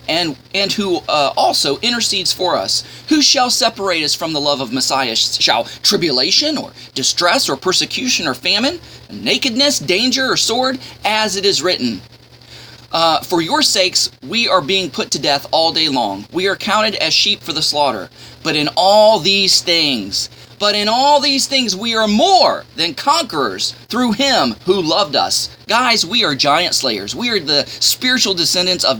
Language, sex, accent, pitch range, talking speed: English, male, American, 160-240 Hz, 175 wpm